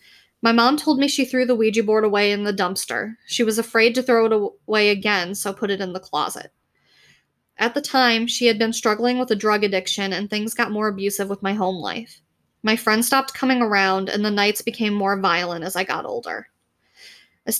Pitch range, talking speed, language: 200-235 Hz, 215 wpm, English